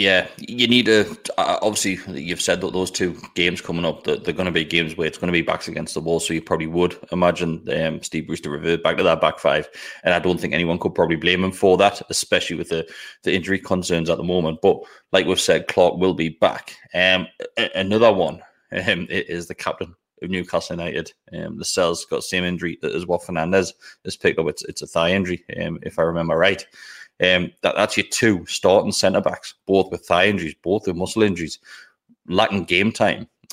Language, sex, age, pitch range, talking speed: English, male, 20-39, 85-95 Hz, 215 wpm